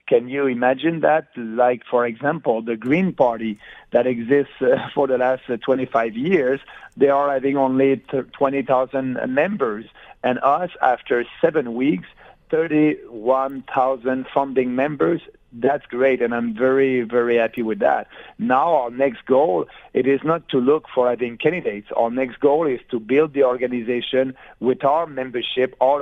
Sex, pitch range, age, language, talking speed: male, 120-135 Hz, 50-69, English, 150 wpm